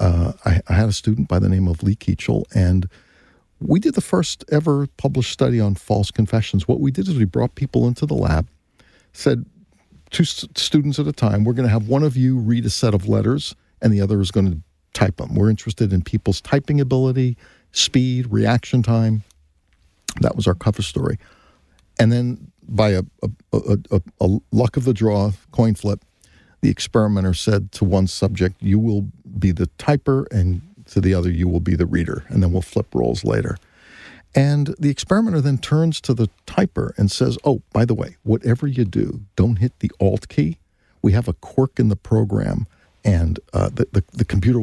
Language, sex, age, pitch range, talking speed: English, male, 50-69, 95-125 Hz, 200 wpm